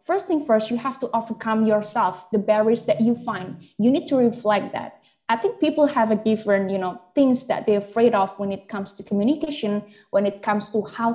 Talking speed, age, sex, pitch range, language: 220 wpm, 10-29, female, 200-245 Hz, English